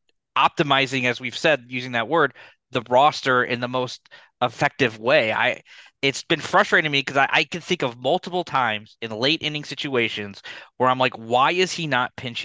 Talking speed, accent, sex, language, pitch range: 190 wpm, American, male, English, 125-165 Hz